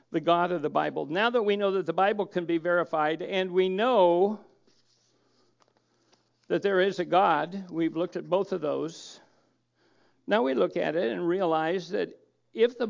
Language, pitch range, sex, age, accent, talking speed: English, 180-230 Hz, male, 60-79, American, 180 wpm